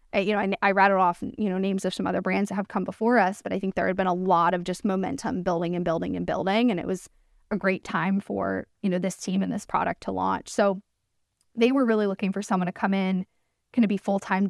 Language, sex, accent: English, female, American